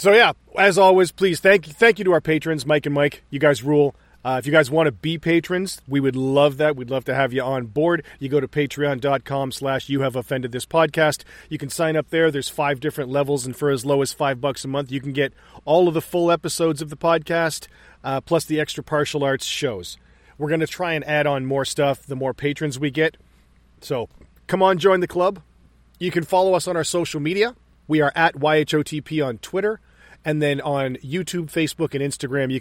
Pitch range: 135-160 Hz